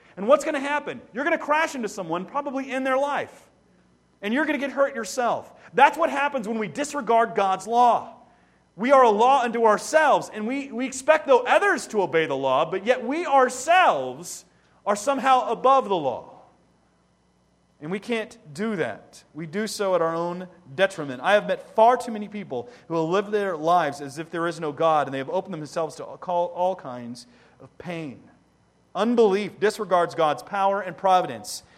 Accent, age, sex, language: American, 30-49, male, English